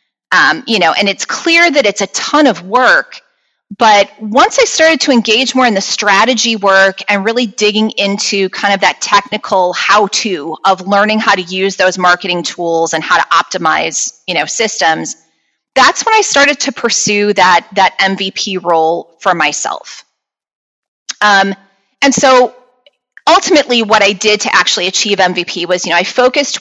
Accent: American